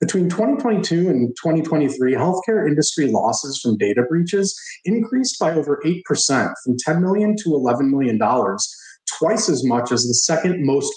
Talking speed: 150 wpm